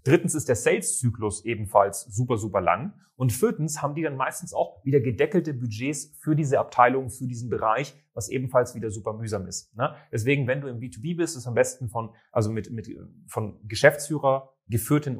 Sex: male